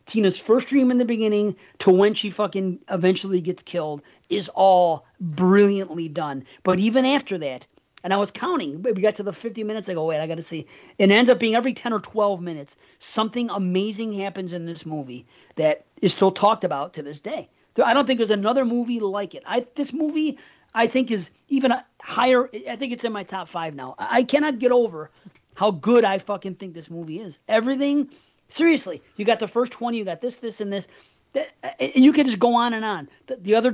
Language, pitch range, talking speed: English, 175-230 Hz, 215 wpm